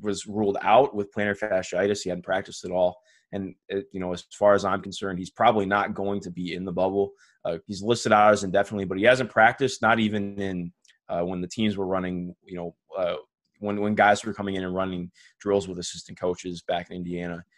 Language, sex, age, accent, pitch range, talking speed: English, male, 20-39, American, 95-110 Hz, 220 wpm